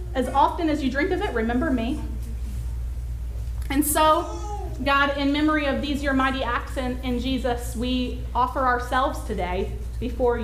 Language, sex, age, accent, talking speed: English, female, 30-49, American, 155 wpm